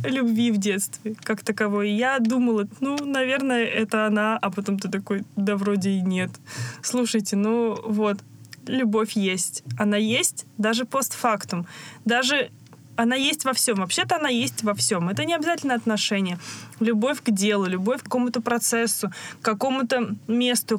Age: 20-39